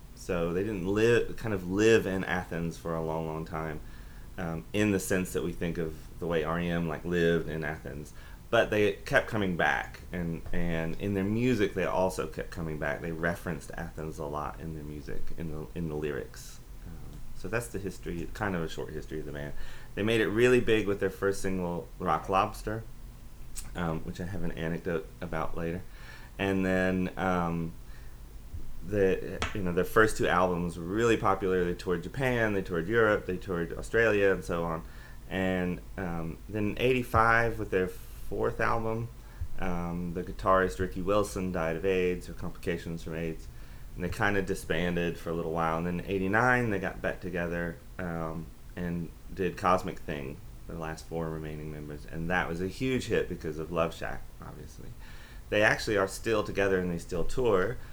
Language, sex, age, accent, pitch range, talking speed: English, male, 30-49, American, 80-95 Hz, 185 wpm